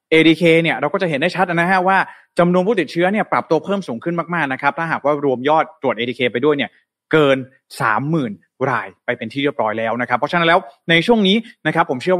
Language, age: Thai, 20-39